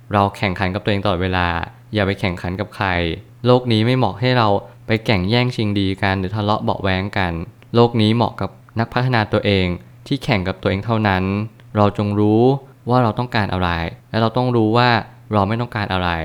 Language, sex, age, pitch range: Thai, male, 20-39, 95-120 Hz